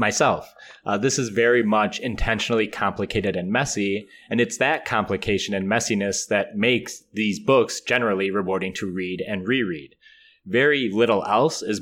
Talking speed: 150 wpm